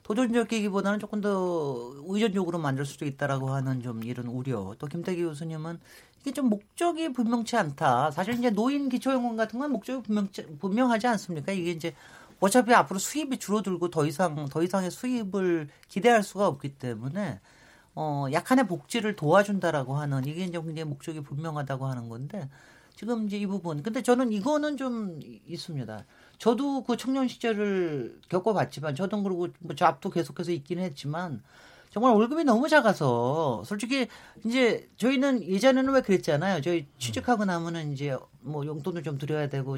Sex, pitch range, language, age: male, 155-245 Hz, Korean, 40-59